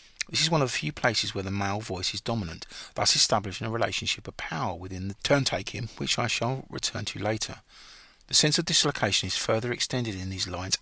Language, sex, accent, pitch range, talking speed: English, male, British, 100-125 Hz, 210 wpm